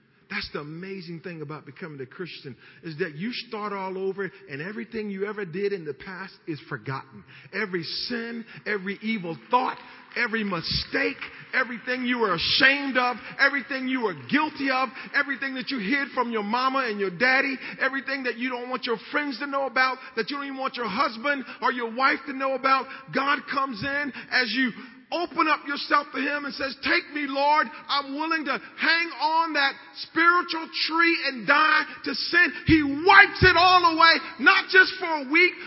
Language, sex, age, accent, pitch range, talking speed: English, male, 40-59, American, 210-330 Hz, 185 wpm